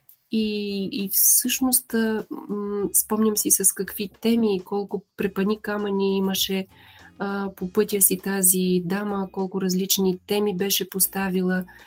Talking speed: 115 wpm